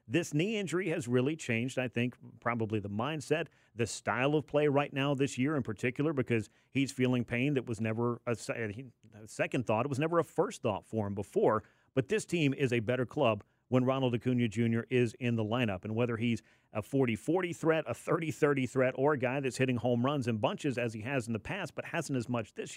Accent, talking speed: American, 220 wpm